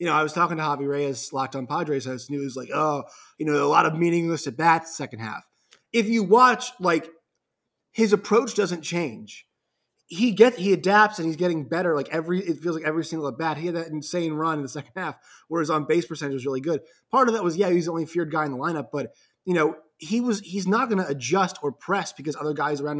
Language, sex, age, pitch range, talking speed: English, male, 20-39, 135-175 Hz, 245 wpm